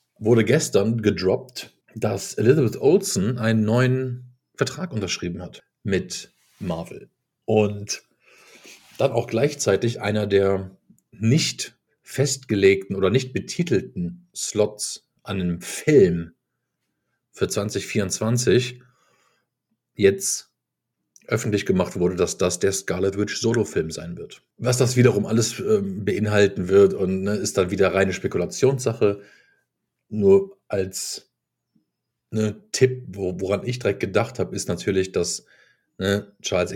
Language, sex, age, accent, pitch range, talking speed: German, male, 50-69, German, 95-125 Hz, 115 wpm